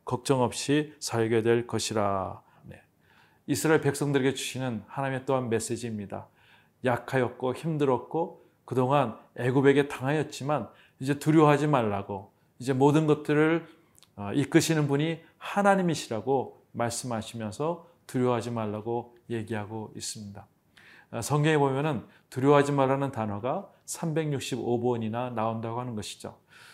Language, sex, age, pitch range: Korean, male, 30-49, 115-150 Hz